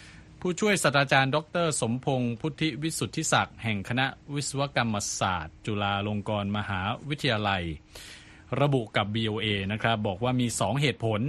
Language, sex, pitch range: Thai, male, 100-125 Hz